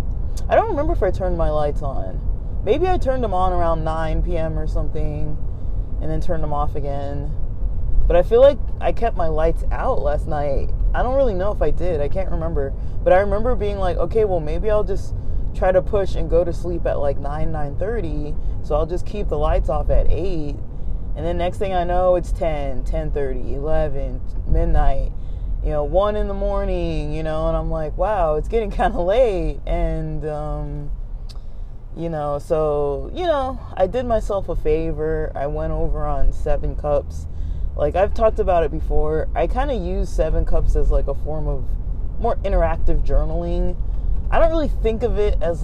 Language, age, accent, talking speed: English, 20-39, American, 195 wpm